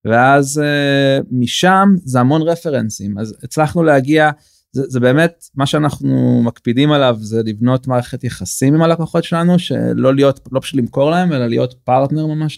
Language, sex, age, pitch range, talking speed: Hebrew, male, 20-39, 115-140 Hz, 155 wpm